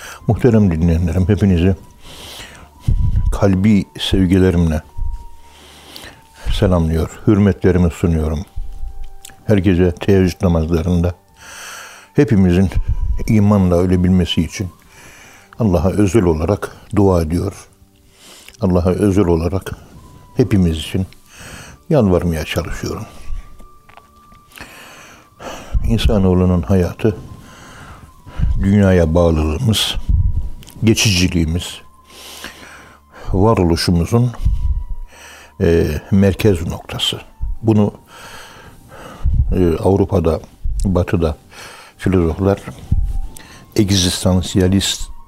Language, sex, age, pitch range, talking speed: Turkish, male, 60-79, 85-100 Hz, 55 wpm